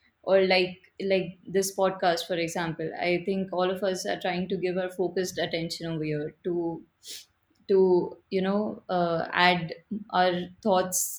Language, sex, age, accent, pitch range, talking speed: English, female, 20-39, Indian, 185-225 Hz, 155 wpm